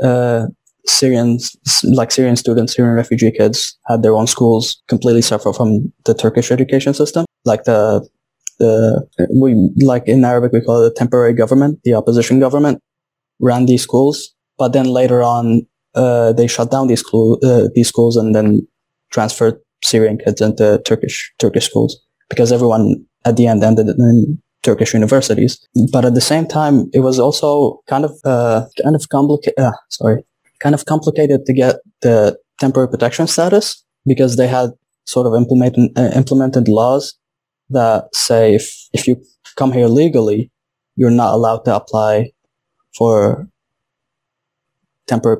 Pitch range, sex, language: 115-135 Hz, male, English